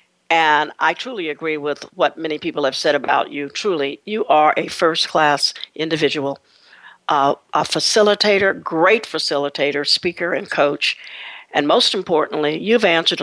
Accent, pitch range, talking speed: American, 150-190 Hz, 140 wpm